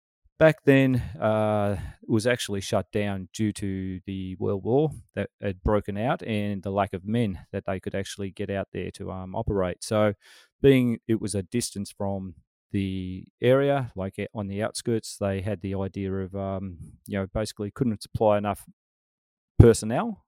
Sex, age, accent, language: male, 30-49, Australian, English